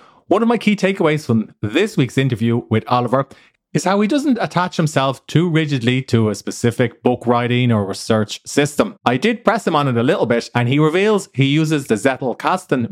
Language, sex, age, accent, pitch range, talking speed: English, male, 30-49, Irish, 115-160 Hz, 200 wpm